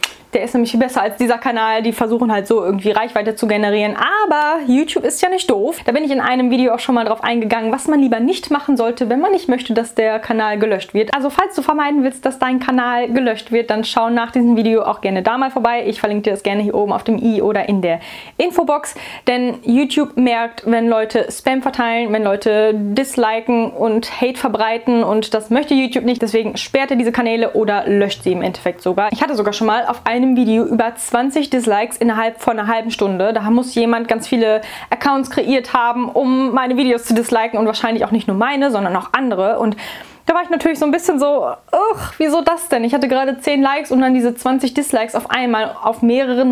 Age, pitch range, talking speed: 10-29, 220-265 Hz, 225 wpm